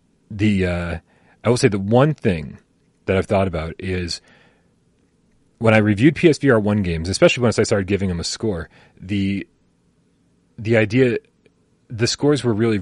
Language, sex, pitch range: English, male, 85-115 Hz